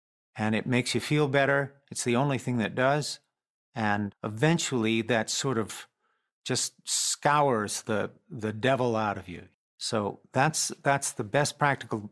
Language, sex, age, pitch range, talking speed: English, male, 50-69, 115-140 Hz, 155 wpm